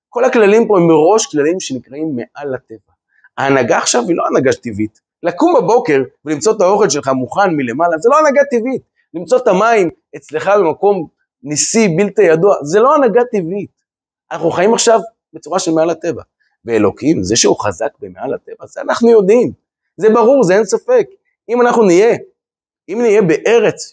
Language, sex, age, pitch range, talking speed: Hebrew, male, 30-49, 150-240 Hz, 165 wpm